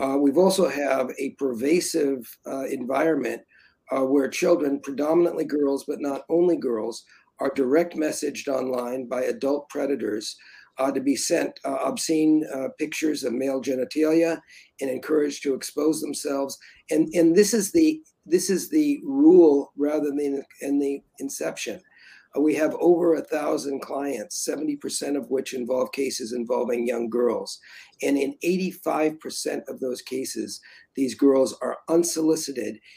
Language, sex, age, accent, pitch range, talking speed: English, male, 50-69, American, 135-160 Hz, 145 wpm